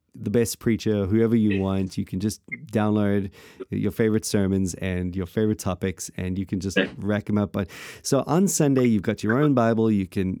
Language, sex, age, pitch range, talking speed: English, male, 30-49, 100-120 Hz, 200 wpm